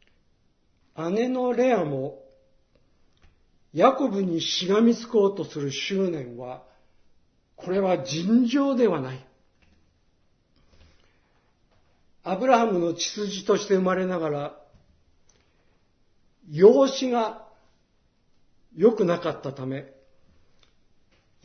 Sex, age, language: male, 50-69, Japanese